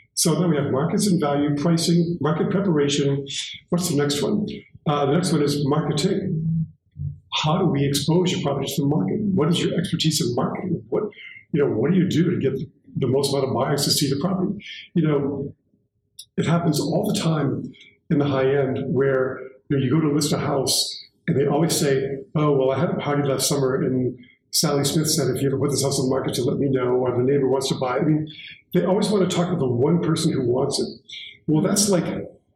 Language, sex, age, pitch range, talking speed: English, male, 50-69, 140-175 Hz, 230 wpm